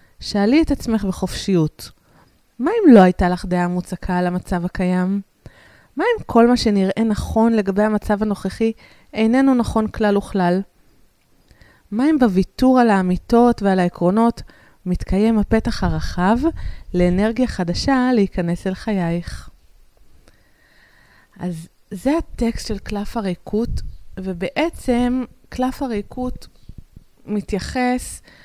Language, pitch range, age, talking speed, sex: Hebrew, 185-235 Hz, 20-39, 110 wpm, female